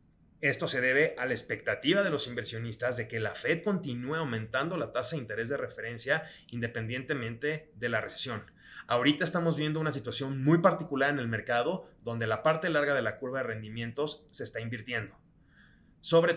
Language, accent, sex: Spanish, Mexican, male